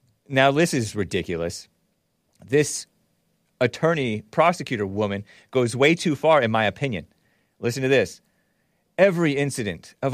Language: English